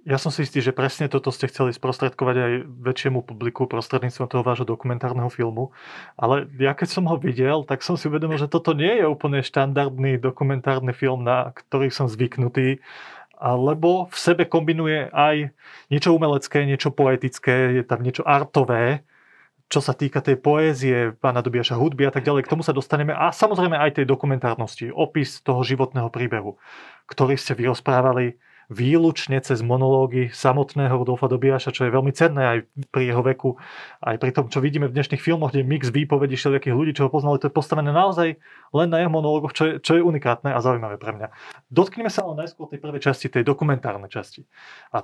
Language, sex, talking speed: Slovak, male, 185 wpm